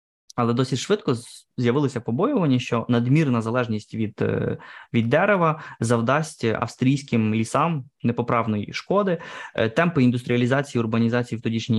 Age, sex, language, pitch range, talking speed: 20-39, male, Ukrainian, 115-140 Hz, 110 wpm